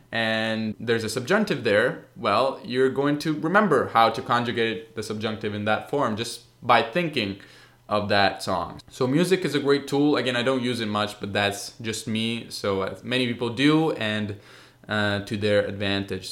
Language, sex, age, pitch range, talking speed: Italian, male, 20-39, 105-135 Hz, 185 wpm